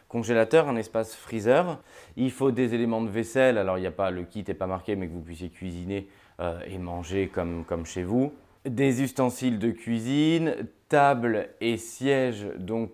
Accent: French